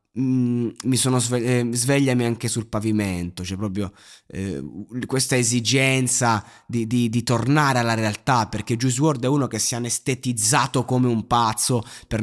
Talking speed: 150 wpm